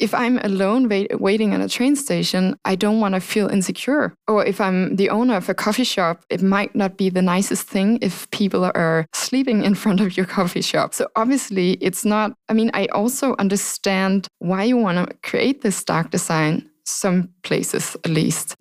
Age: 20-39